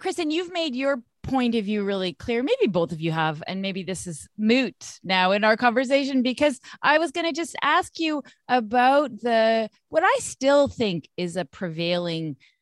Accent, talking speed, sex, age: American, 190 wpm, female, 30-49